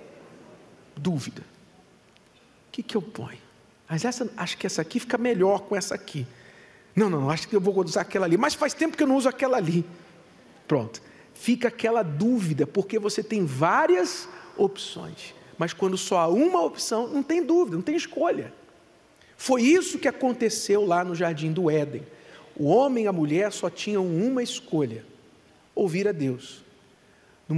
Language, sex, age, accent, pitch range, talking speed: Portuguese, male, 50-69, Brazilian, 170-245 Hz, 170 wpm